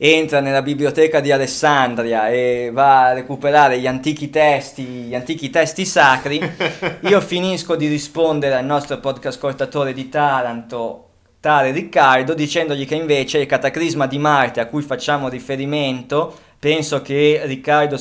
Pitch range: 125-155 Hz